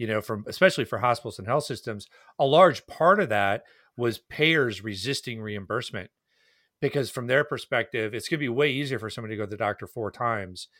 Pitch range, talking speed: 115-145 Hz, 205 wpm